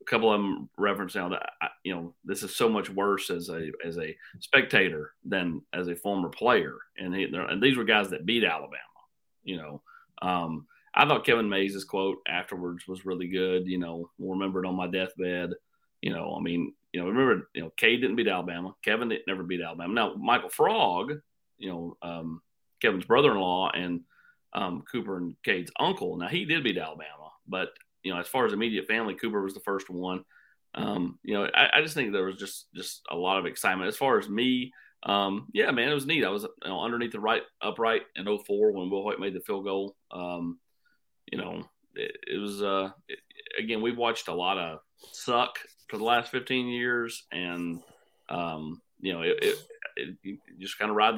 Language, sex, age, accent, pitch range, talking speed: English, male, 30-49, American, 90-120 Hz, 210 wpm